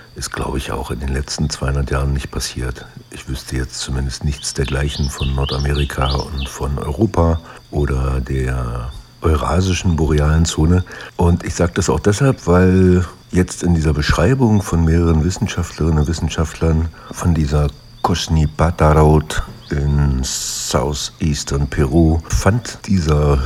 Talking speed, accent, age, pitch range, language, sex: 135 wpm, German, 60-79, 70-90 Hz, German, male